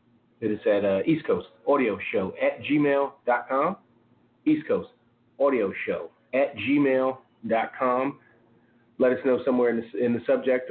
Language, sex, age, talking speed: English, male, 30-49, 130 wpm